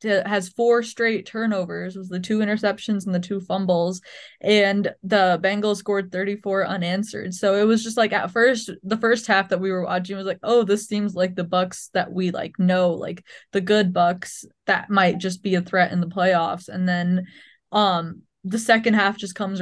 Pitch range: 180-210 Hz